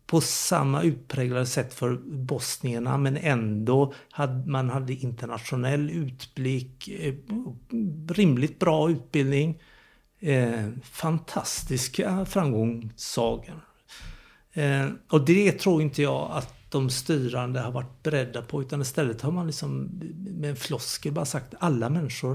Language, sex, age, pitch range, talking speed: Swedish, male, 60-79, 125-155 Hz, 105 wpm